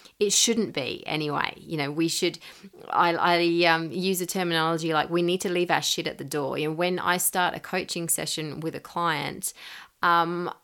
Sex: female